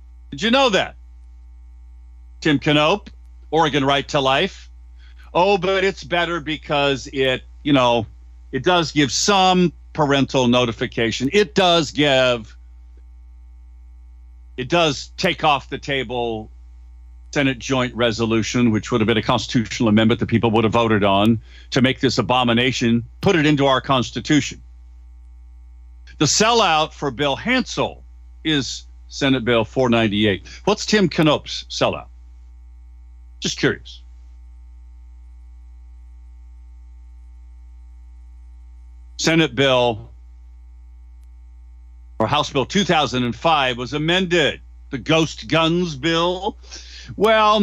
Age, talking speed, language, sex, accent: 50-69, 110 wpm, English, male, American